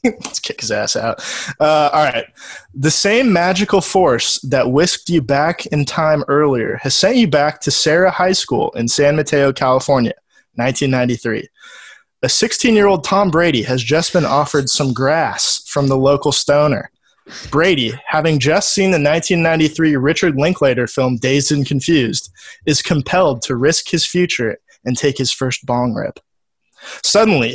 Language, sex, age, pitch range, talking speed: English, male, 20-39, 135-170 Hz, 155 wpm